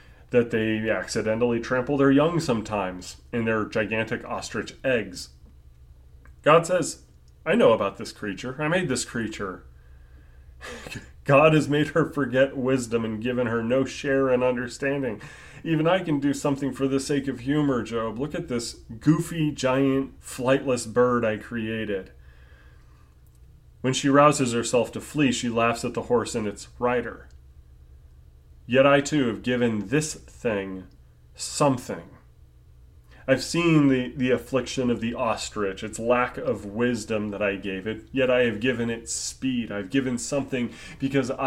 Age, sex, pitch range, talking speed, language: 30-49, male, 95-135 Hz, 150 wpm, English